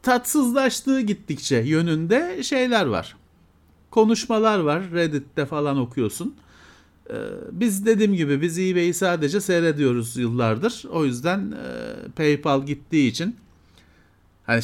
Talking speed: 100 wpm